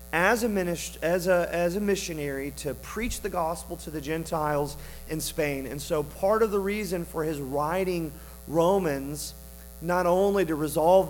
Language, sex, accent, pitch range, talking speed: English, male, American, 135-180 Hz, 170 wpm